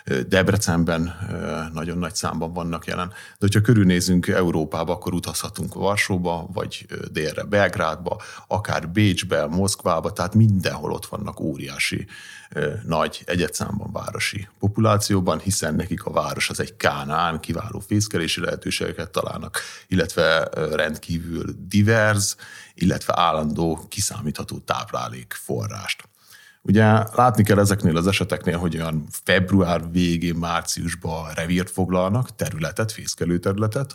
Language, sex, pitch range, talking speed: Hungarian, male, 85-105 Hz, 110 wpm